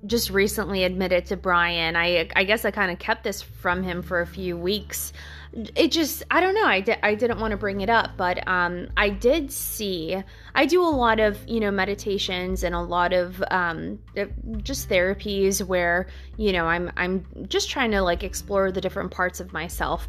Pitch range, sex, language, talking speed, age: 180-220 Hz, female, English, 200 wpm, 20-39